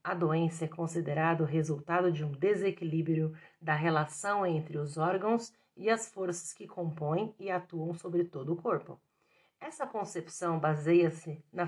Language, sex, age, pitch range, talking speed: Portuguese, female, 40-59, 165-210 Hz, 150 wpm